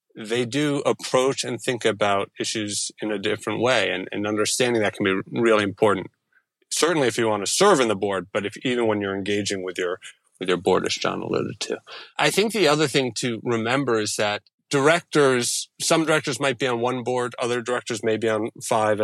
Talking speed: 210 wpm